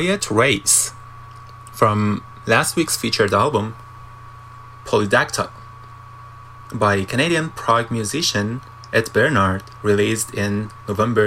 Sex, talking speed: male, 80 wpm